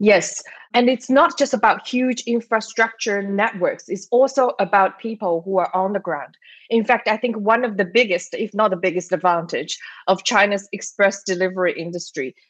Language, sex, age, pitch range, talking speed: English, female, 20-39, 185-230 Hz, 175 wpm